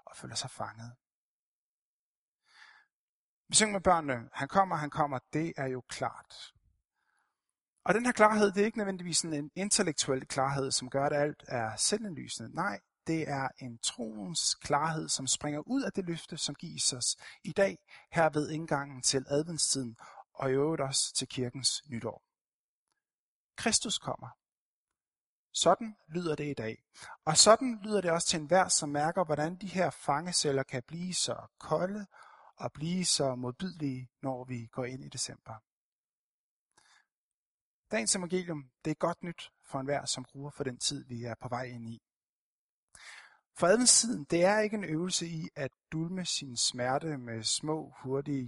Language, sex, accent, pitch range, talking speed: Danish, male, native, 130-170 Hz, 160 wpm